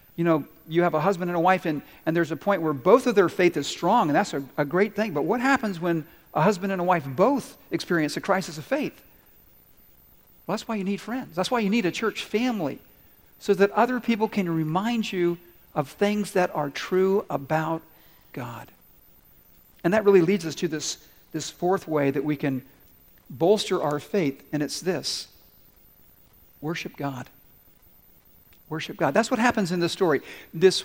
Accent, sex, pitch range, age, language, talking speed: American, male, 145-185 Hz, 50-69, English, 195 wpm